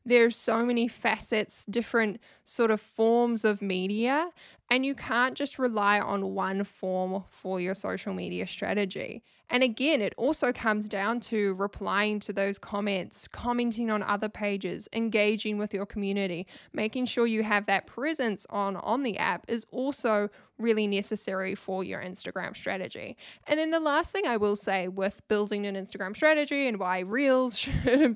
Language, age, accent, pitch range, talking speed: English, 10-29, Australian, 200-250 Hz, 165 wpm